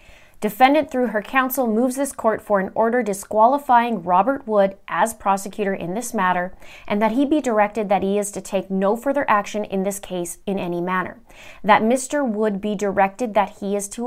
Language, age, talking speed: English, 30-49, 195 wpm